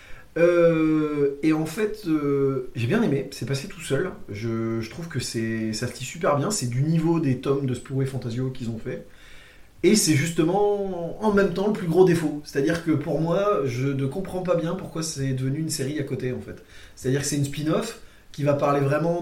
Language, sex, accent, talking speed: French, male, French, 235 wpm